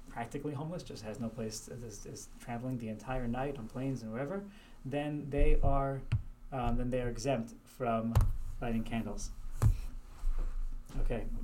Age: 30-49